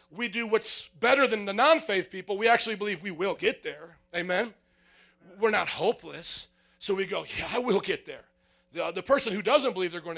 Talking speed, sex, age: 210 wpm, male, 40-59